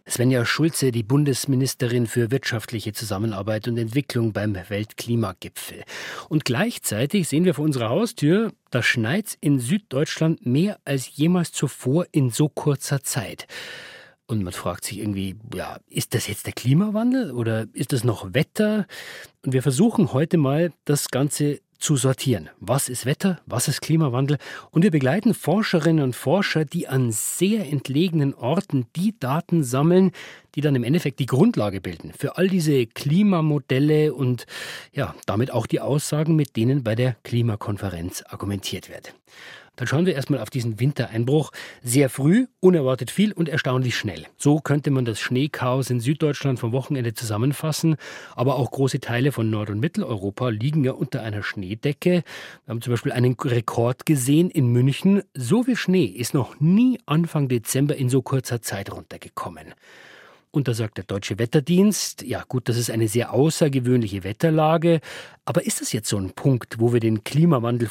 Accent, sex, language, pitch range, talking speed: German, male, German, 120-160 Hz, 165 wpm